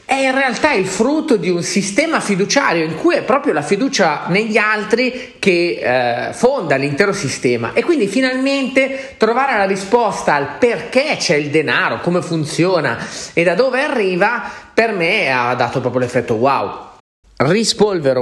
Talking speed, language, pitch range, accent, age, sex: 155 wpm, Italian, 150-220 Hz, native, 40-59, male